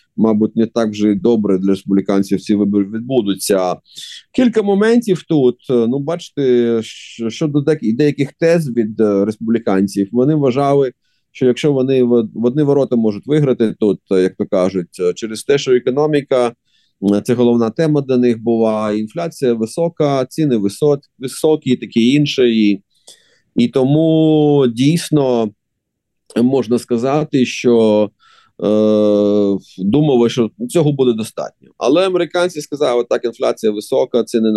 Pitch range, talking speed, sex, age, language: 105-140 Hz, 125 wpm, male, 30-49, Ukrainian